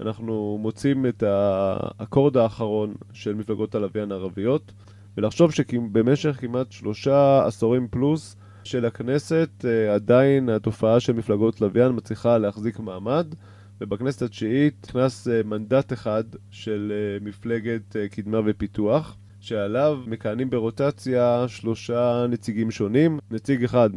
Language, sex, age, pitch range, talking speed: Hebrew, male, 20-39, 100-120 Hz, 105 wpm